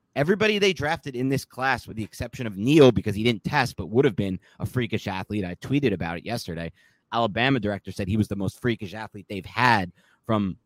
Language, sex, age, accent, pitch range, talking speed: English, male, 30-49, American, 100-135 Hz, 220 wpm